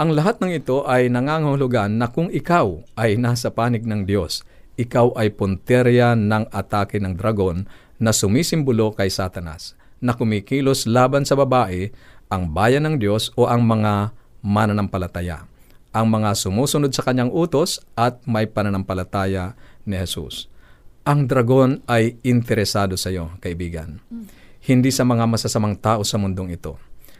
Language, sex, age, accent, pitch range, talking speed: Filipino, male, 50-69, native, 105-130 Hz, 140 wpm